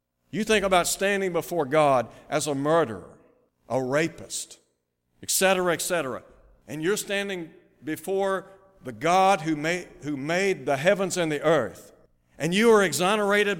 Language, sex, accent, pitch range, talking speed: English, male, American, 150-195 Hz, 150 wpm